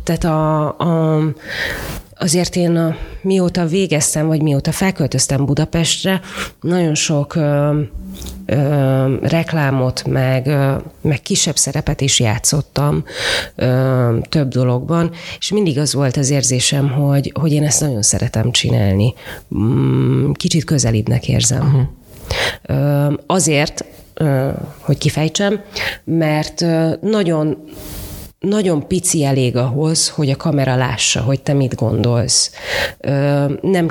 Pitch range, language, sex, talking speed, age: 130-165 Hz, Hungarian, female, 110 wpm, 30-49